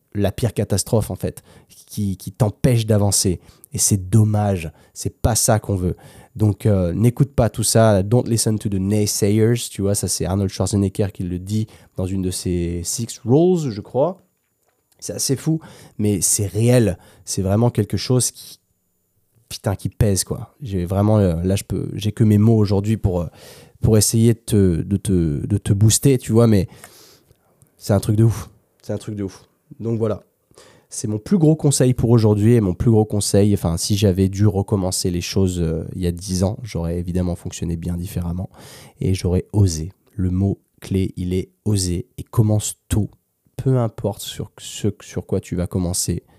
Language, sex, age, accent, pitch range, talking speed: French, male, 20-39, French, 95-115 Hz, 190 wpm